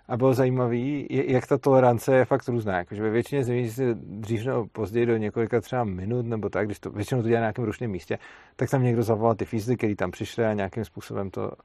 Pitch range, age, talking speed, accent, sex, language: 110-130 Hz, 40-59, 230 wpm, native, male, Czech